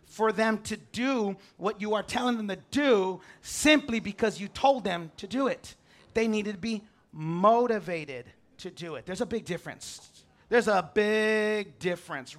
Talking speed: 170 wpm